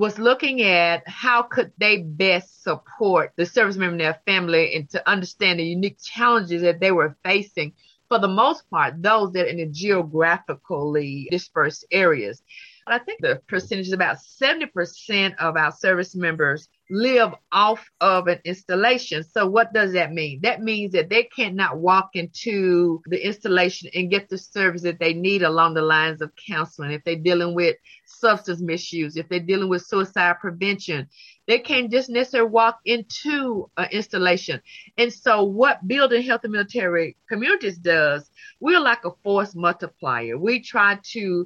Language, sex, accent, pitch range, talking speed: English, female, American, 170-220 Hz, 170 wpm